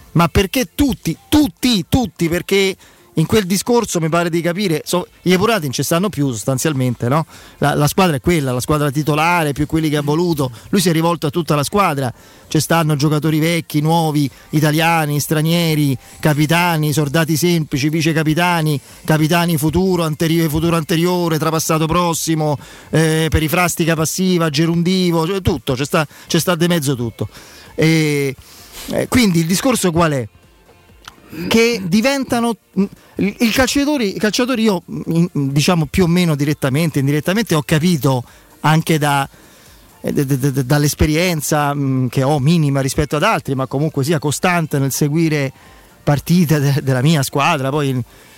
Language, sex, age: Italian, male, 40-59